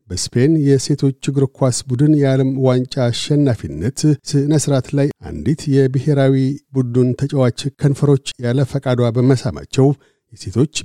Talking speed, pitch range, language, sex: 105 wpm, 115-140 Hz, Amharic, male